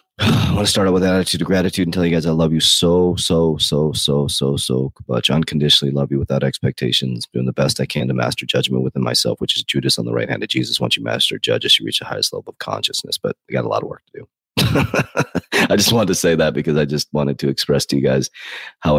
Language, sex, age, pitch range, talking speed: English, male, 30-49, 65-75 Hz, 265 wpm